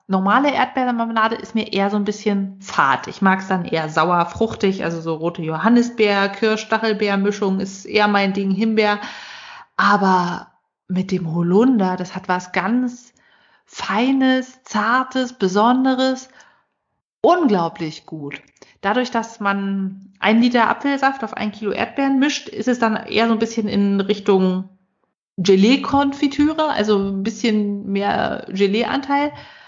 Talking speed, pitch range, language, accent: 130 wpm, 190-230 Hz, German, German